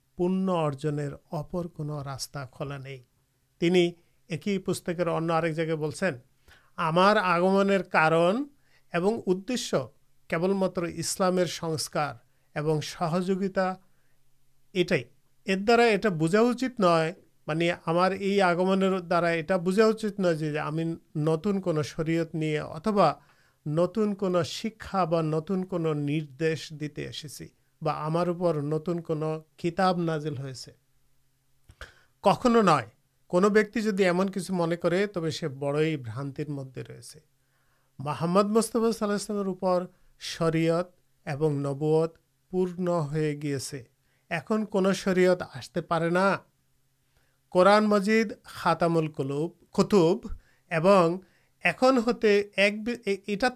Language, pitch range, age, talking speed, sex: Urdu, 150-190 Hz, 50-69, 80 wpm, male